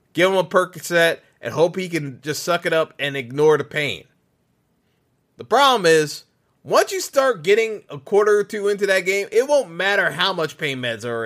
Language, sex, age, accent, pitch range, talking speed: English, male, 30-49, American, 150-200 Hz, 205 wpm